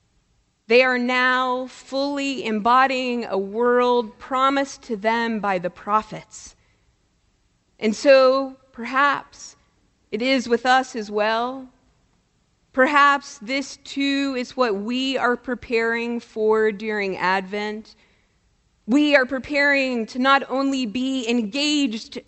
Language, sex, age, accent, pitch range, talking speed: English, female, 40-59, American, 215-260 Hz, 110 wpm